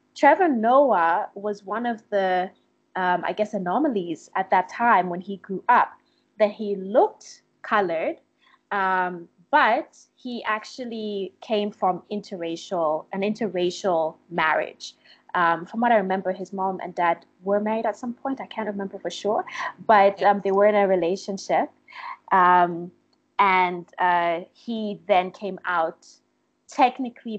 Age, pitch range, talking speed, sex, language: 20-39, 185-245 Hz, 140 wpm, female, English